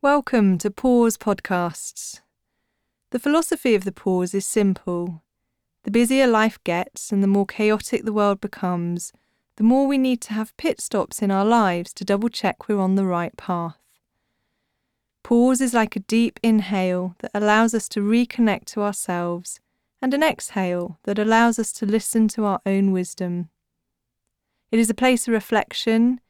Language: English